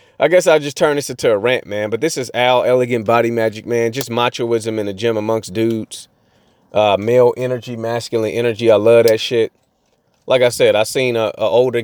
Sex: male